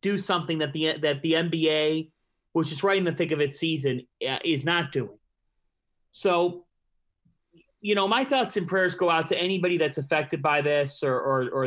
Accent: American